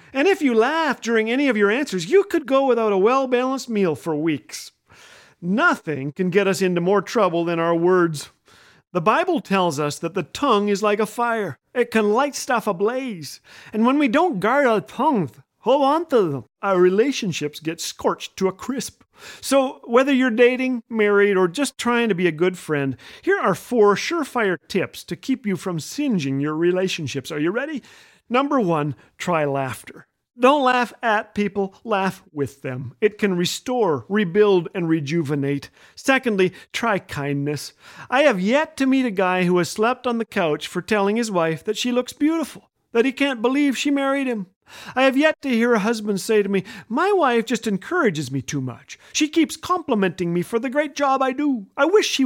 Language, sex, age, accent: English, male, 40-59, American